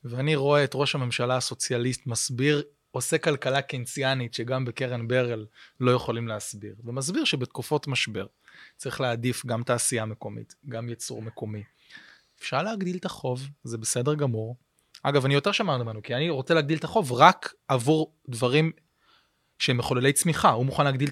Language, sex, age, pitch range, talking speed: Hebrew, male, 20-39, 125-160 Hz, 155 wpm